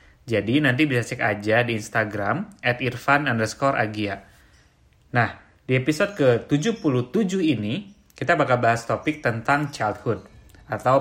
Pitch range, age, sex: 105-130 Hz, 30-49, male